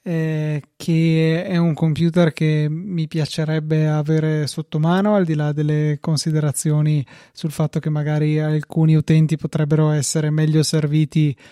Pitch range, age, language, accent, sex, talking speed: 155-175 Hz, 20-39, Italian, native, male, 135 wpm